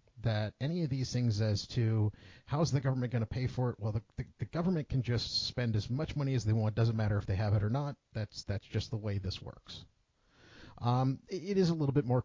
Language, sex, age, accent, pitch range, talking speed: English, male, 50-69, American, 105-125 Hz, 265 wpm